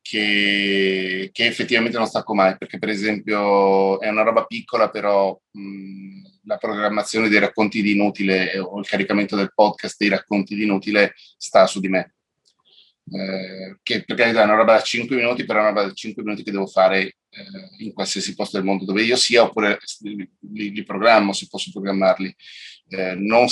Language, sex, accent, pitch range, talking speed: Italian, male, native, 95-110 Hz, 185 wpm